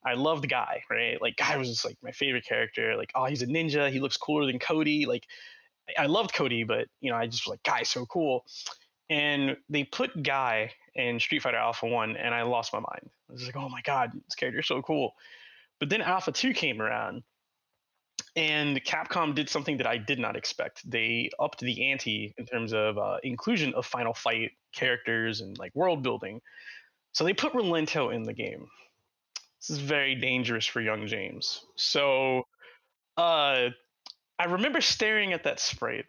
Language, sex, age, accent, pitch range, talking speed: English, male, 20-39, American, 125-170 Hz, 190 wpm